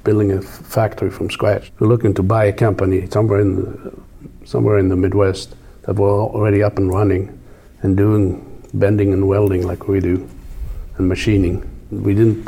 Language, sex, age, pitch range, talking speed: English, male, 50-69, 95-110 Hz, 175 wpm